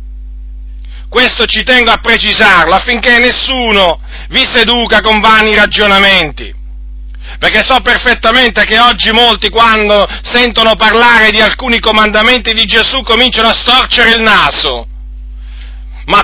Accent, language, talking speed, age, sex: native, Italian, 120 wpm, 40-59, male